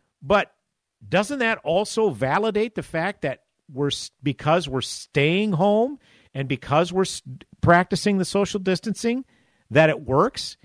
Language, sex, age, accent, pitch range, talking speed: English, male, 50-69, American, 130-180 Hz, 130 wpm